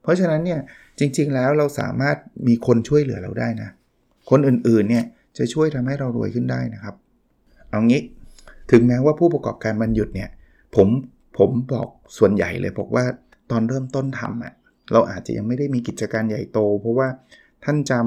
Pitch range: 115-145 Hz